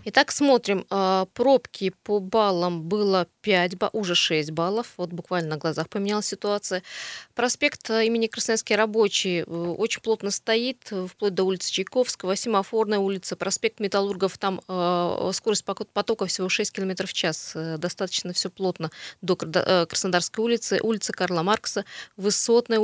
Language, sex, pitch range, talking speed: Russian, female, 180-210 Hz, 130 wpm